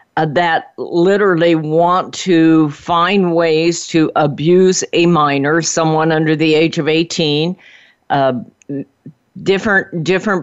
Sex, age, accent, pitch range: female, 50-69, American, 145-180 Hz